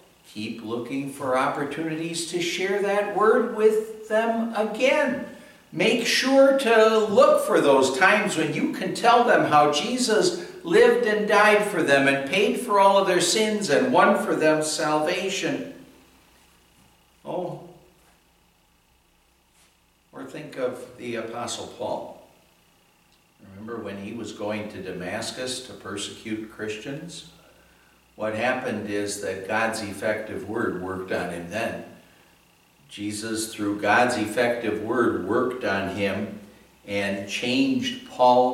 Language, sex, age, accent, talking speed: English, male, 60-79, American, 125 wpm